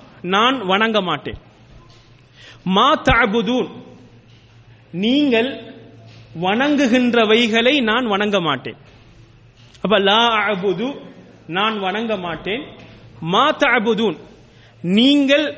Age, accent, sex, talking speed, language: 30-49, Indian, male, 80 wpm, English